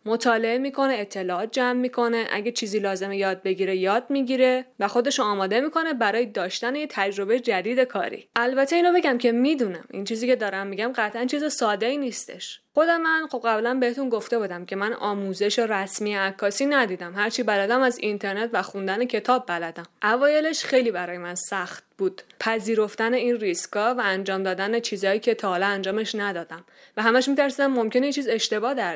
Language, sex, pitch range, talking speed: Persian, female, 195-260 Hz, 180 wpm